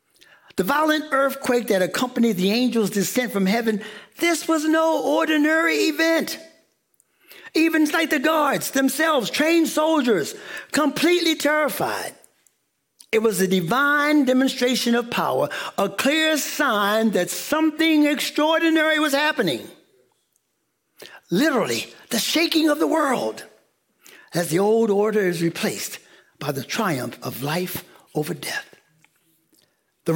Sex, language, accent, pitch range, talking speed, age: male, English, American, 225-310 Hz, 115 wpm, 60-79